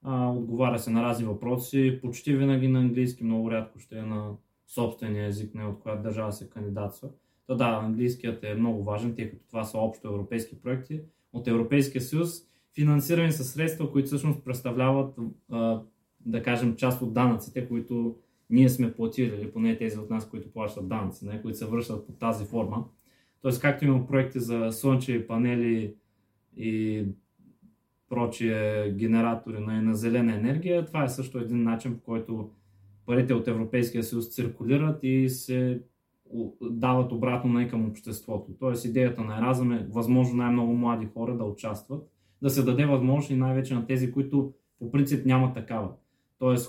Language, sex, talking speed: Bulgarian, male, 160 wpm